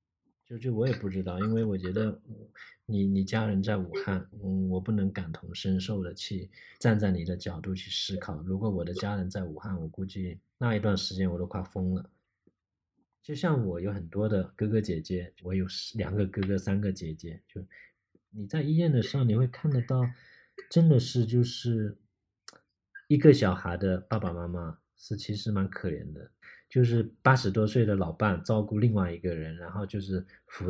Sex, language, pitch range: male, Chinese, 95-115 Hz